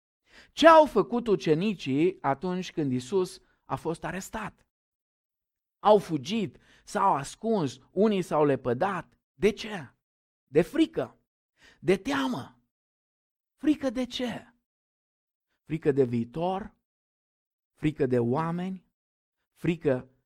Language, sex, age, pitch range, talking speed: Romanian, male, 50-69, 145-210 Hz, 100 wpm